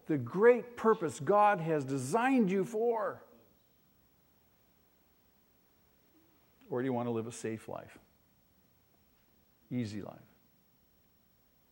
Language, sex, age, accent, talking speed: English, male, 60-79, American, 95 wpm